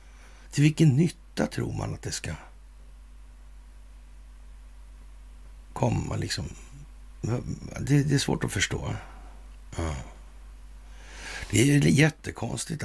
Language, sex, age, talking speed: Swedish, male, 60-79, 95 wpm